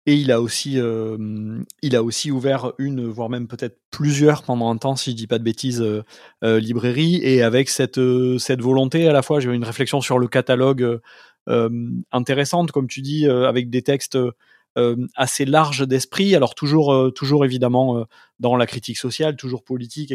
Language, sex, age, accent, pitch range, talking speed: French, male, 30-49, French, 120-150 Hz, 200 wpm